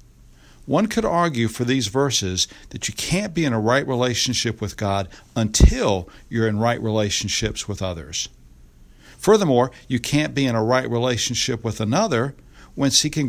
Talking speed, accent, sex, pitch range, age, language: 160 wpm, American, male, 105-140 Hz, 60-79, English